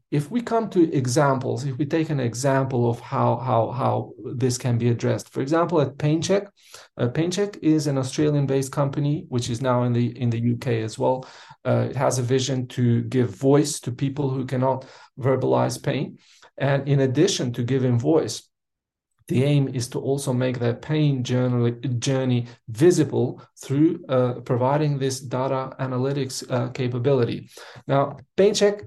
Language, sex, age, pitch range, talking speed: English, male, 40-59, 125-145 Hz, 165 wpm